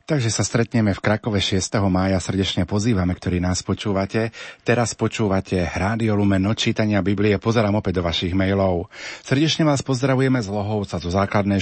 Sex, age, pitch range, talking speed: male, 40-59, 100-115 Hz, 150 wpm